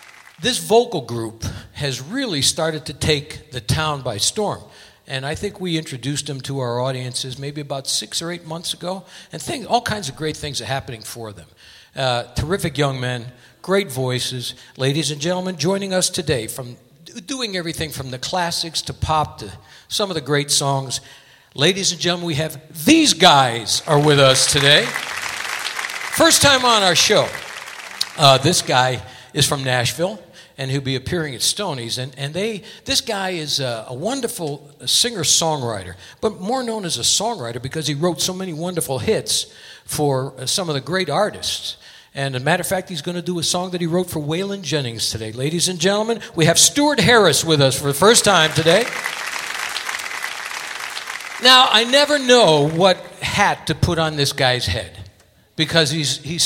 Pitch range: 130-180 Hz